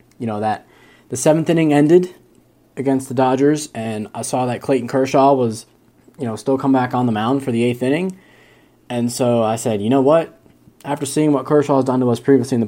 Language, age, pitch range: English, 20-39, 100-120 Hz